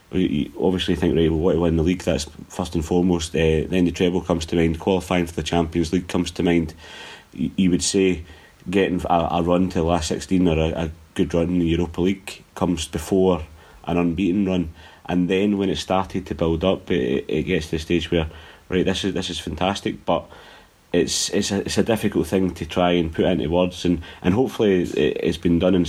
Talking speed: 215 wpm